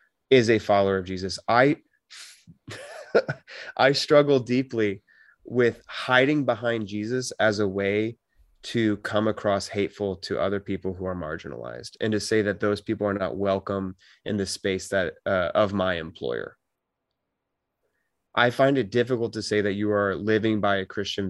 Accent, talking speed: American, 160 wpm